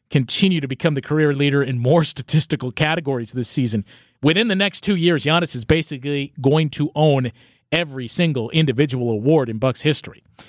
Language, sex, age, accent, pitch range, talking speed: English, male, 40-59, American, 125-155 Hz, 170 wpm